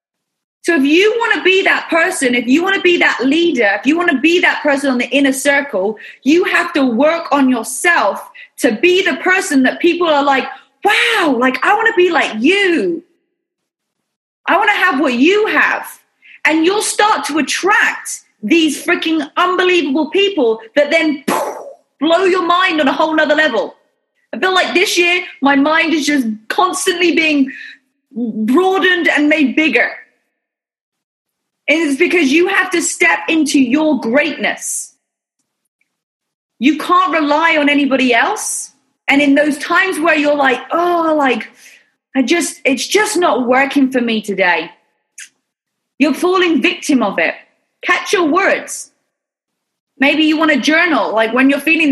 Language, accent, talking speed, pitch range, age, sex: English, British, 160 wpm, 270-350 Hz, 30-49, female